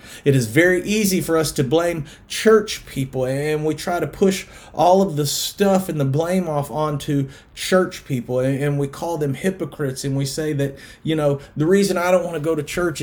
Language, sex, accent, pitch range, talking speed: English, male, American, 130-160 Hz, 210 wpm